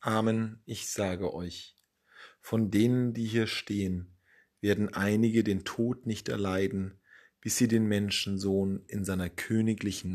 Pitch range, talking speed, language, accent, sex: 90-110 Hz, 130 wpm, German, German, male